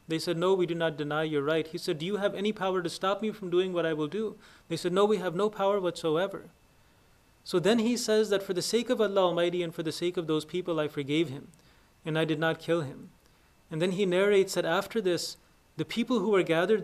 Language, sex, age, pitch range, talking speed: English, male, 30-49, 160-195 Hz, 255 wpm